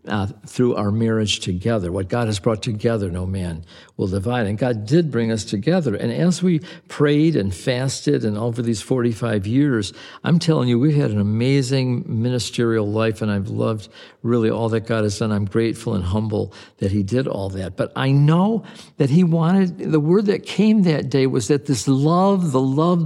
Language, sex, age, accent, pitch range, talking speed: English, male, 60-79, American, 110-145 Hz, 200 wpm